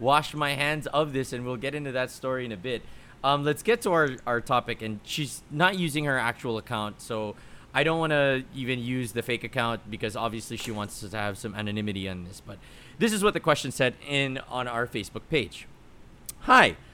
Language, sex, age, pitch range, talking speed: English, male, 30-49, 115-155 Hz, 215 wpm